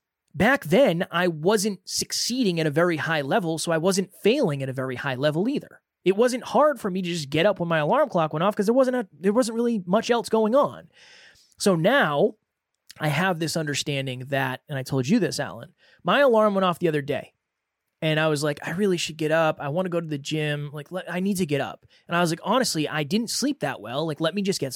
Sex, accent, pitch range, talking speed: male, American, 145-195 Hz, 245 wpm